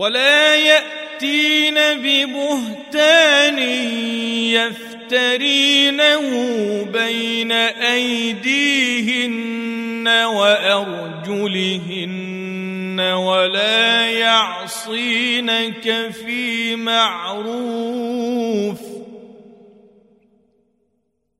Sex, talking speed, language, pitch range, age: male, 30 wpm, Arabic, 225-275 Hz, 40-59